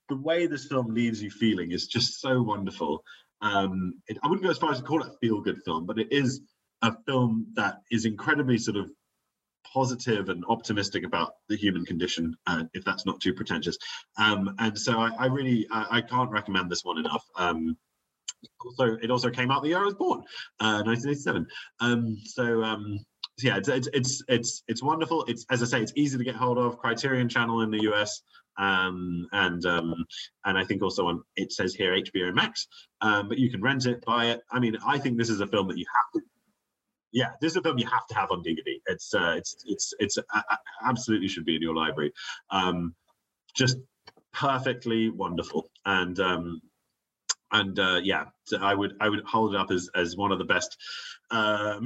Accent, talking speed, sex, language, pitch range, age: British, 210 wpm, male, English, 105-135 Hz, 30-49